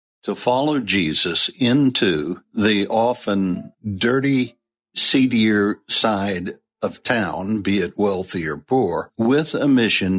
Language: English